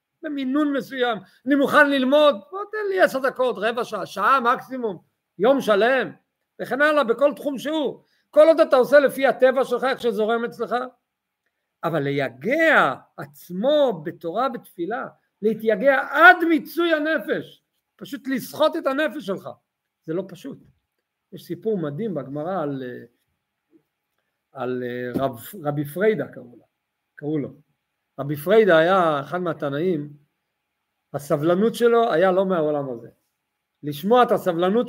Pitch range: 170-265 Hz